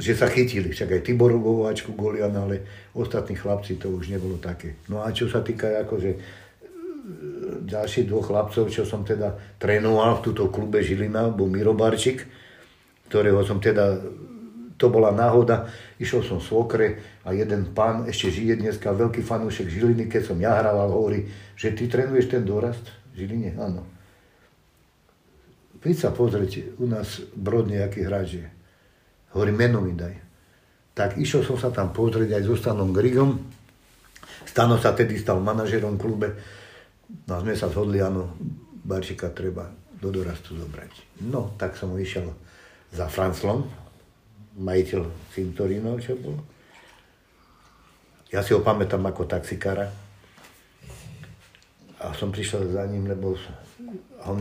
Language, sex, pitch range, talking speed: Slovak, male, 95-115 Hz, 140 wpm